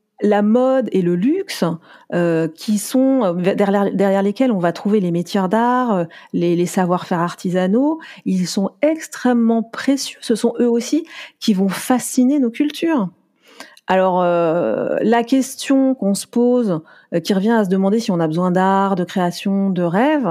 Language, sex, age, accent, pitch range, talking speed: French, female, 40-59, French, 190-270 Hz, 165 wpm